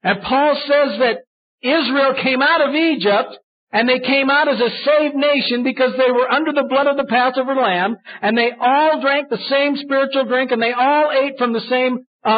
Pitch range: 220-275 Hz